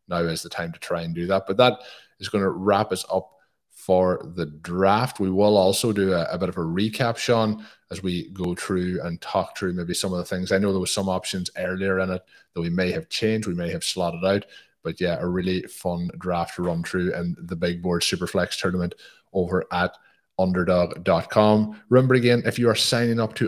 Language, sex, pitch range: English, male, 90-110 Hz